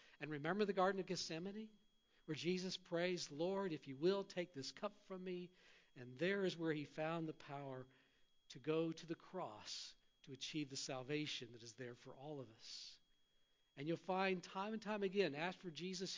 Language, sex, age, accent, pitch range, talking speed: English, male, 50-69, American, 135-185 Hz, 190 wpm